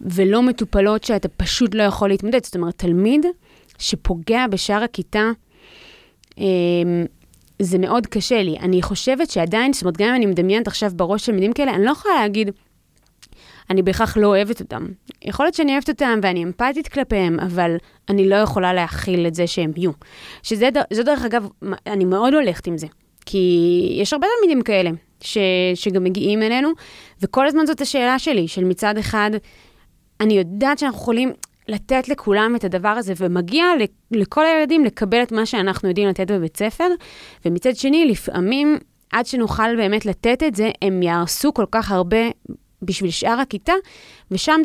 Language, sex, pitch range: Hebrew, female, 185-250 Hz